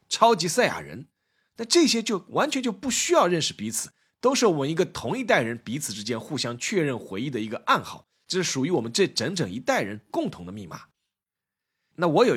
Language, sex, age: Chinese, male, 20-39